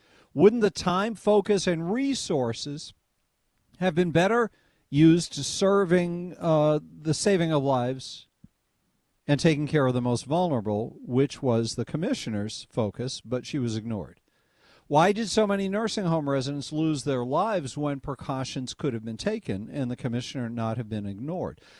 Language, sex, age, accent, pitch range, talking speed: English, male, 50-69, American, 130-195 Hz, 155 wpm